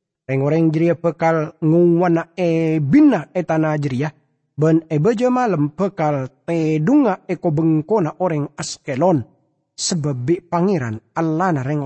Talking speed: 100 wpm